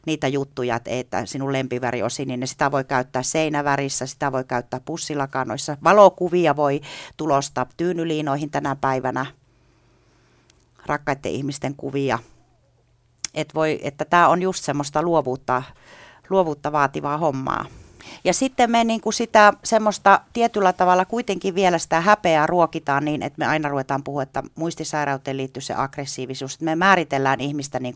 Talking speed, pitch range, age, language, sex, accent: 140 wpm, 135-160 Hz, 40-59, Finnish, female, native